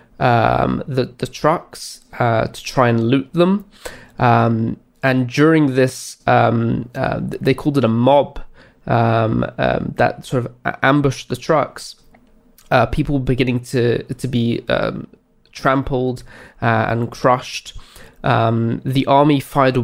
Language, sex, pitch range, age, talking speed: English, male, 120-135 Hz, 20-39, 135 wpm